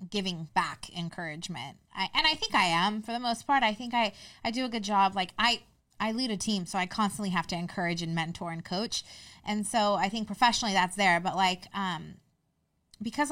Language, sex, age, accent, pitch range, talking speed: English, female, 20-39, American, 180-230 Hz, 210 wpm